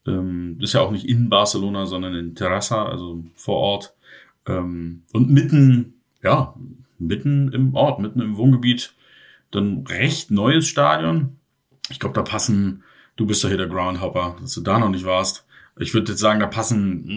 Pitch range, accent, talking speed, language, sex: 95-115 Hz, German, 165 wpm, German, male